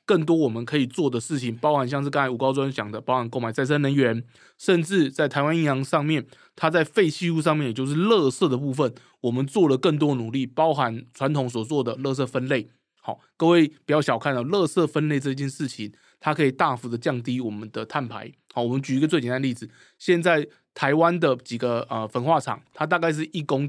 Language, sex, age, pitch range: Chinese, male, 20-39, 125-150 Hz